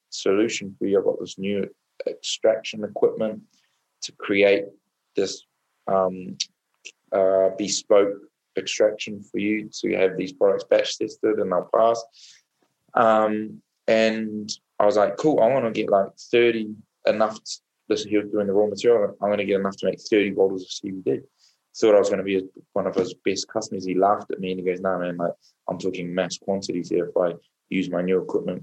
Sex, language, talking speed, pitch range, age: male, English, 190 wpm, 95-110 Hz, 20-39